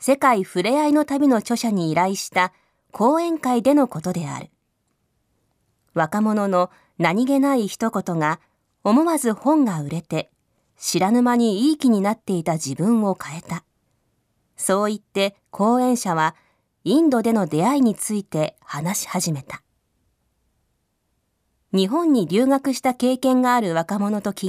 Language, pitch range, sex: Japanese, 170-255 Hz, female